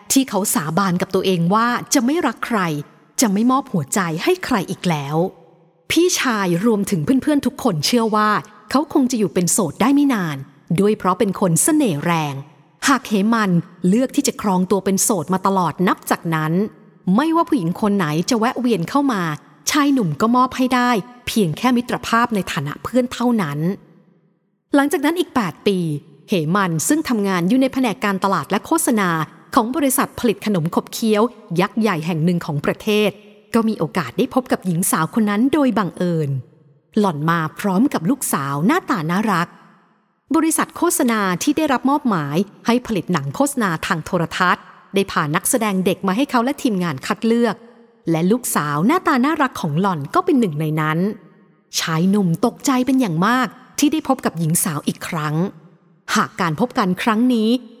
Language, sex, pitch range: English, female, 175-250 Hz